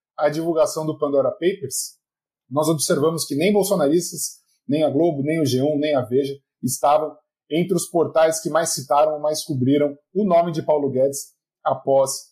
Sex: male